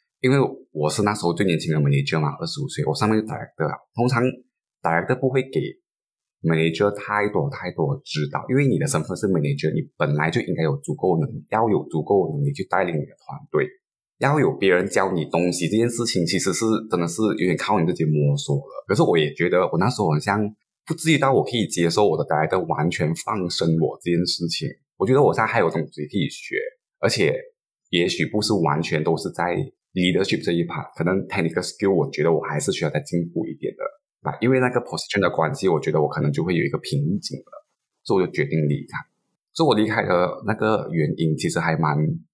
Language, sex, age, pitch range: Chinese, male, 20-39, 80-130 Hz